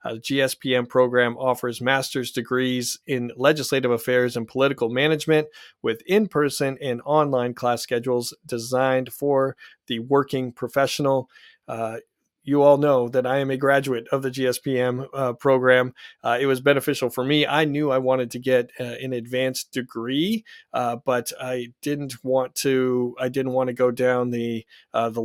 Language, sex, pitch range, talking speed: English, male, 125-140 Hz, 165 wpm